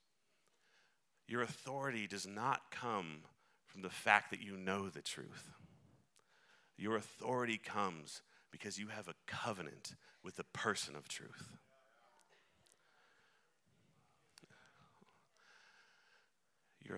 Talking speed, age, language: 95 wpm, 40-59, English